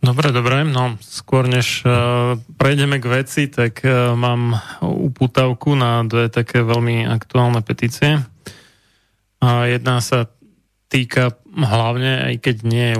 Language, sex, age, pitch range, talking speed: Slovak, male, 20-39, 115-125 Hz, 115 wpm